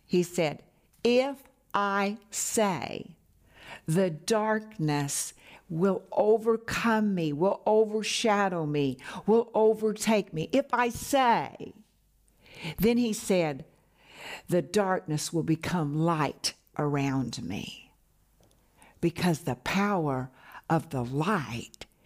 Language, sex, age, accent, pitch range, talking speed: English, female, 60-79, American, 150-215 Hz, 95 wpm